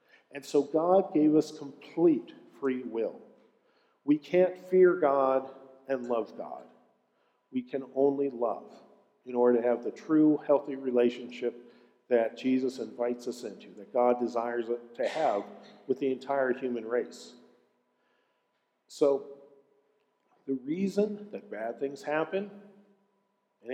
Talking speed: 125 wpm